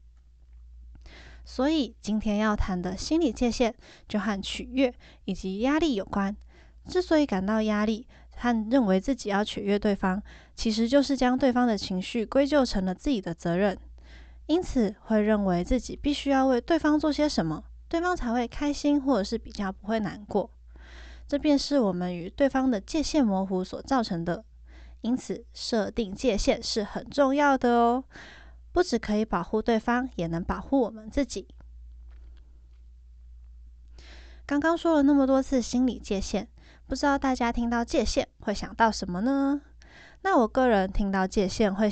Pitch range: 190-265 Hz